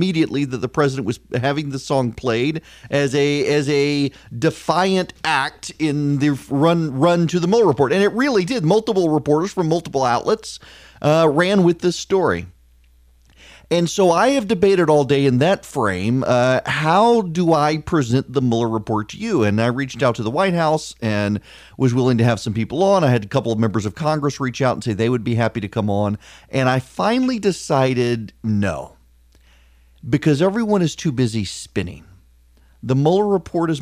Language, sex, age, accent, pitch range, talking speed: English, male, 40-59, American, 110-160 Hz, 190 wpm